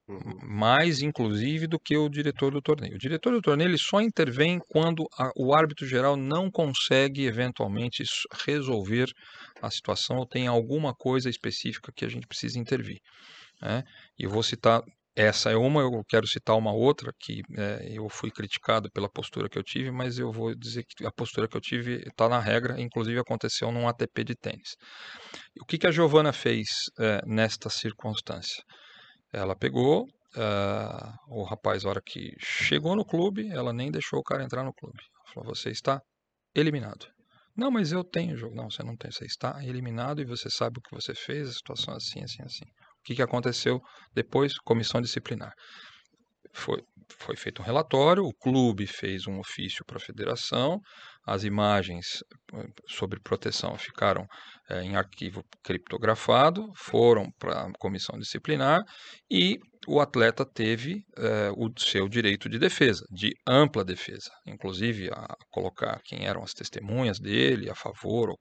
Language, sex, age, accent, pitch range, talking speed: Portuguese, male, 40-59, Brazilian, 110-145 Hz, 170 wpm